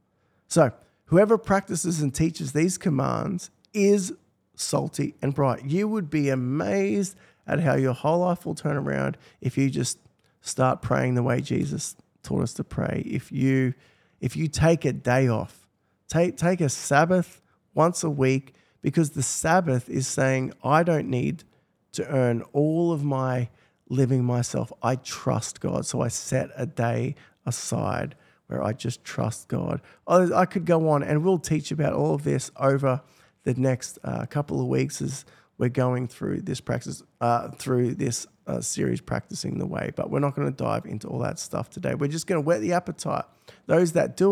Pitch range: 130-170 Hz